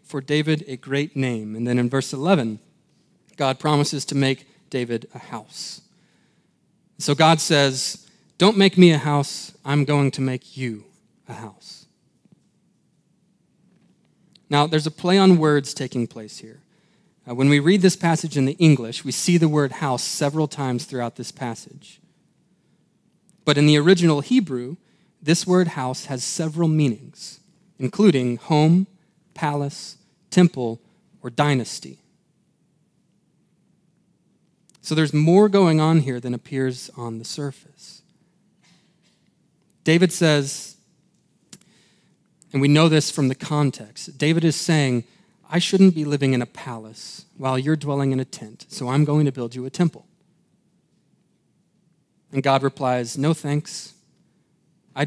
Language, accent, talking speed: English, American, 140 wpm